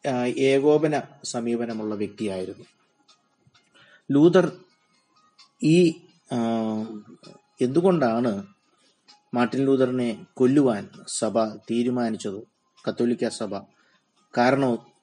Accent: native